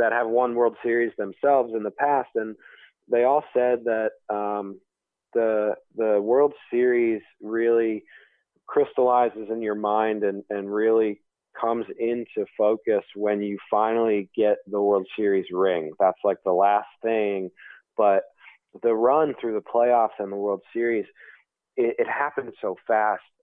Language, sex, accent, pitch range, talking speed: English, male, American, 100-120 Hz, 150 wpm